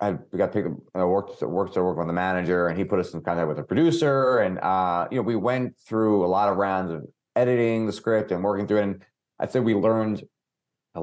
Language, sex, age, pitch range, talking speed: English, male, 30-49, 90-110 Hz, 235 wpm